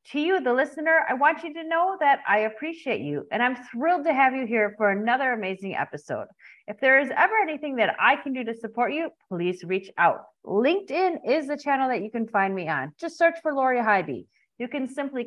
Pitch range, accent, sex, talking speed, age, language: 205-290 Hz, American, female, 225 wpm, 30-49, English